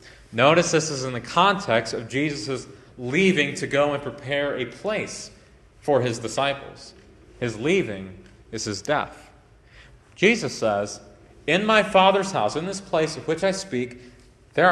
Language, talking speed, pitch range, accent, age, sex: English, 150 wpm, 115-155 Hz, American, 30-49, male